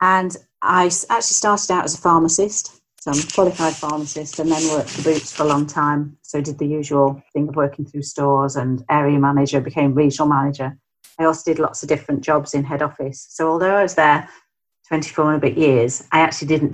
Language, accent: English, British